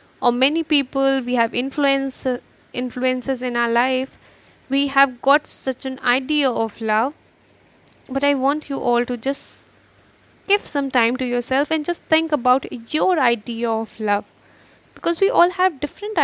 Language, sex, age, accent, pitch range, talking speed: English, female, 10-29, Indian, 240-285 Hz, 160 wpm